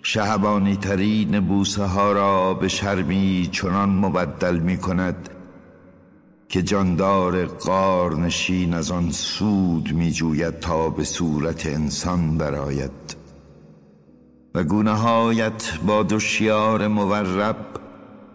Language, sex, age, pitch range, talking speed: Persian, male, 60-79, 90-105 Hz, 90 wpm